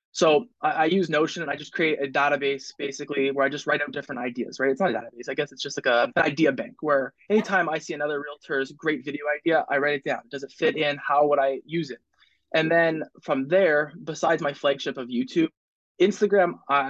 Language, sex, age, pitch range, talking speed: English, male, 20-39, 135-160 Hz, 225 wpm